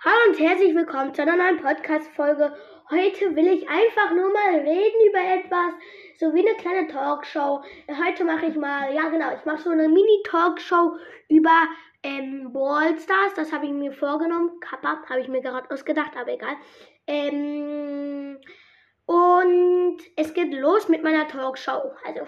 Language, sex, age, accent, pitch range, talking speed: German, female, 20-39, German, 290-360 Hz, 155 wpm